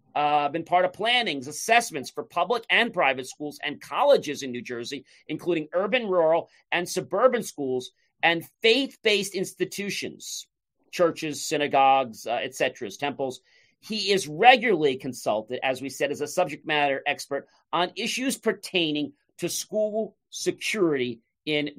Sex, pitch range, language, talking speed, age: male, 135-185 Hz, English, 140 wpm, 40-59